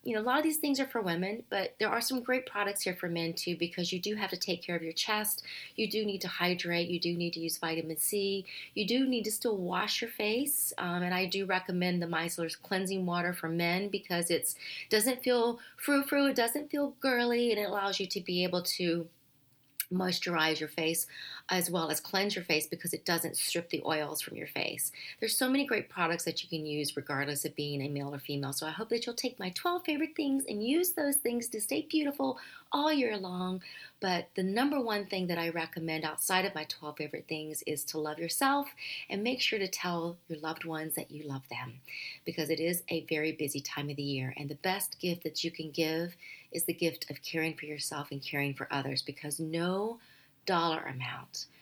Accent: American